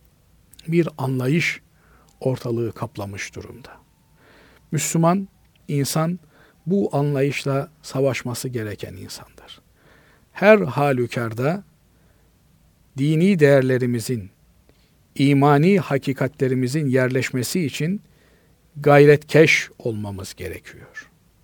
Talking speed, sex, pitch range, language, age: 65 wpm, male, 135-170 Hz, Turkish, 50-69